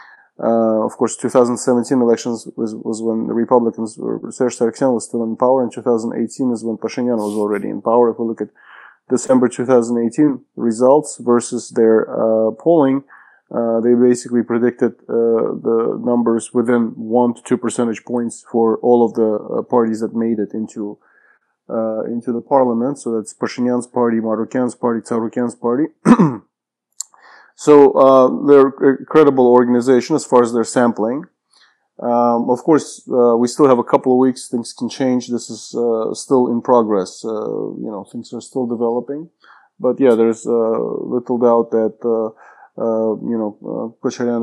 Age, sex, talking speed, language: 20-39, male, 165 wpm, English